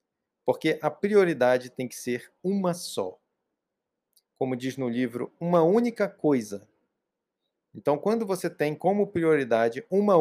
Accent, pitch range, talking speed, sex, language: Brazilian, 125-185 Hz, 130 wpm, male, Portuguese